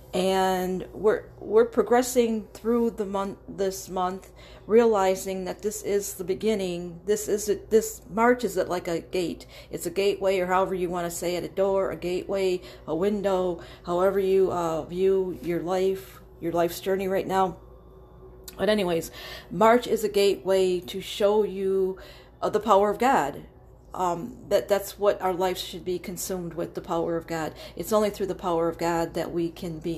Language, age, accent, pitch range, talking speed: English, 40-59, American, 170-195 Hz, 180 wpm